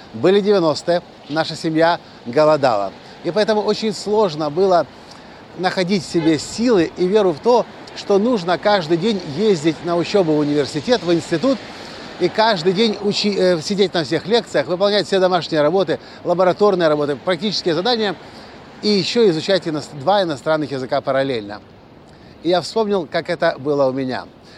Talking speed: 145 wpm